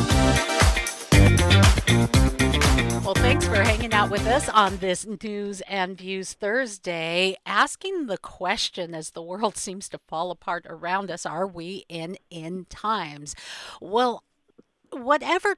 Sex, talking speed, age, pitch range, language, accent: female, 125 wpm, 50-69, 175-265 Hz, English, American